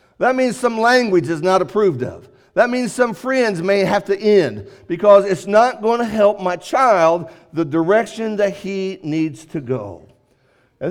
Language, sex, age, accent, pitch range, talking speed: English, male, 50-69, American, 165-230 Hz, 175 wpm